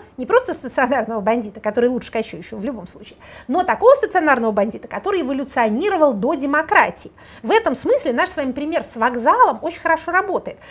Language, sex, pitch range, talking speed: Russian, female, 230-320 Hz, 170 wpm